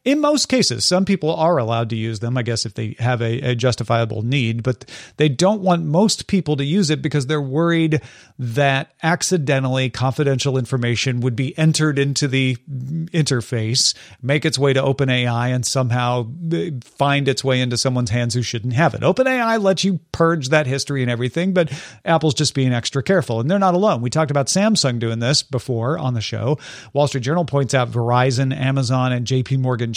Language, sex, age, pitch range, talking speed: English, male, 40-59, 125-165 Hz, 190 wpm